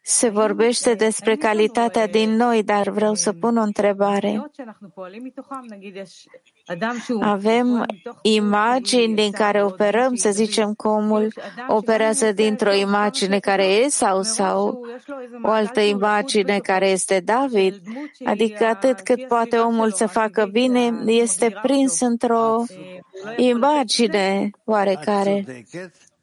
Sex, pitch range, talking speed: female, 205-240 Hz, 110 wpm